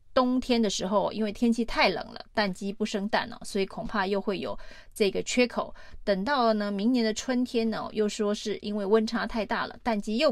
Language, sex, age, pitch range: Chinese, female, 30-49, 195-225 Hz